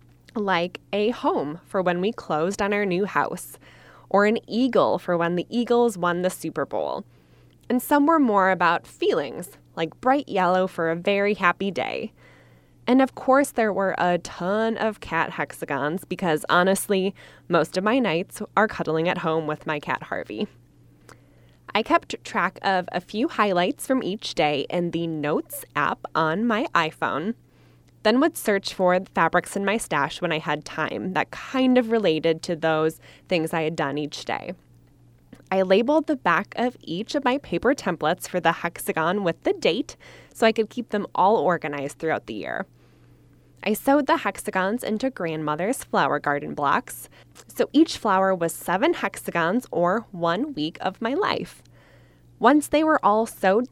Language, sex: English, female